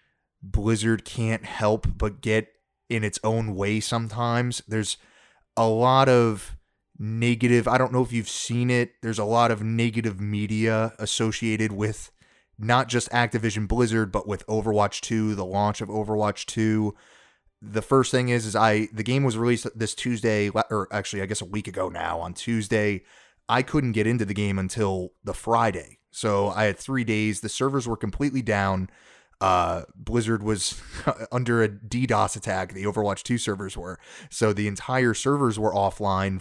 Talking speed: 170 wpm